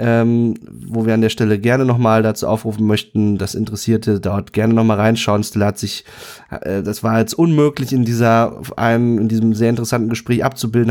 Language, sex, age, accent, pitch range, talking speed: German, male, 30-49, German, 110-135 Hz, 195 wpm